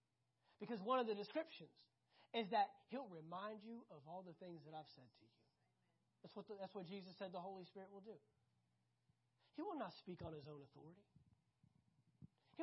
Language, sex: English, male